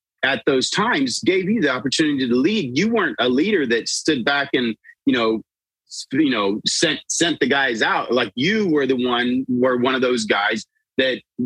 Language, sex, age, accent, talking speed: English, male, 30-49, American, 195 wpm